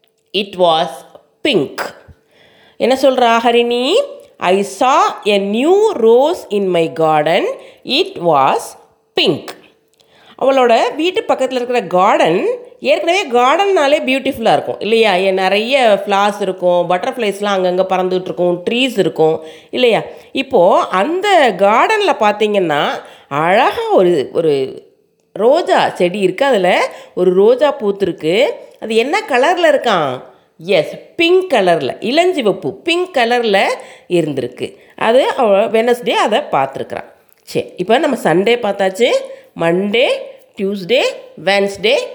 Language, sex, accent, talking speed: Tamil, female, native, 105 wpm